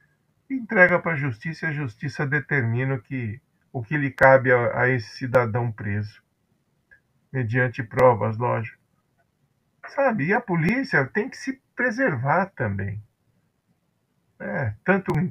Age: 50-69